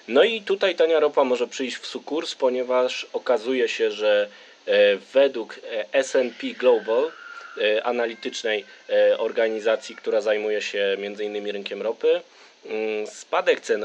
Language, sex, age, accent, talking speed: Polish, male, 20-39, native, 115 wpm